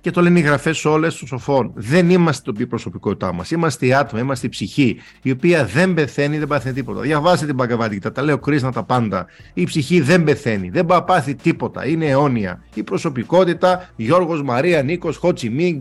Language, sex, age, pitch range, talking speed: Greek, male, 50-69, 125-175 Hz, 190 wpm